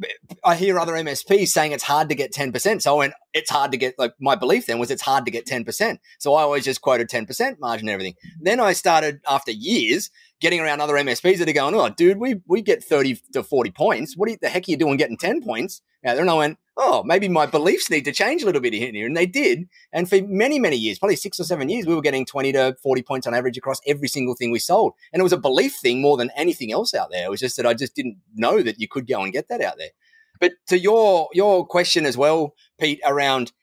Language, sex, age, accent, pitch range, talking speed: English, male, 30-49, Australian, 130-180 Hz, 270 wpm